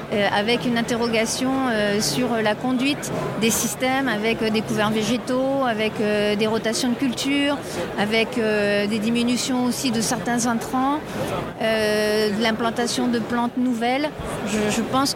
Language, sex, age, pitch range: French, female, 40-59, 220-255 Hz